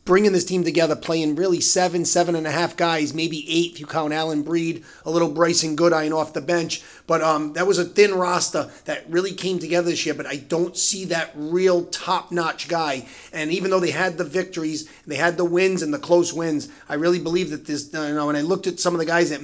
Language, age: English, 30-49